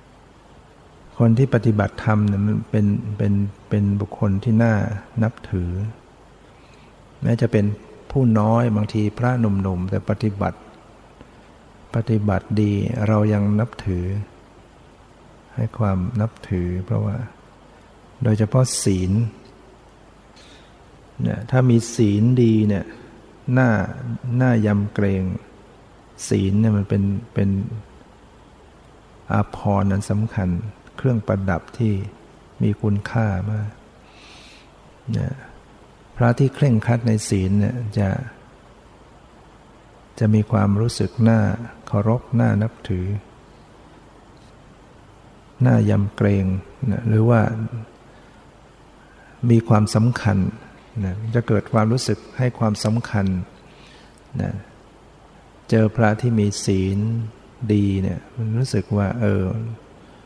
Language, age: English, 60-79